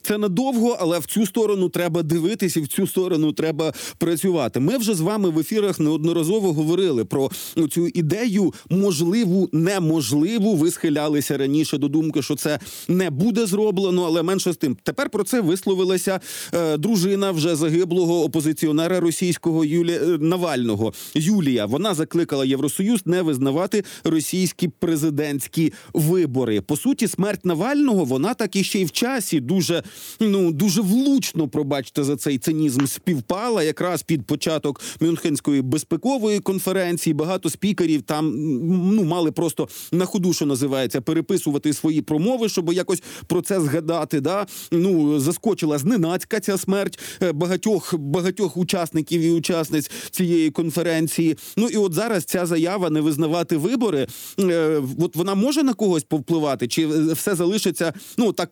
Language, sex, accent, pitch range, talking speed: Ukrainian, male, native, 155-190 Hz, 145 wpm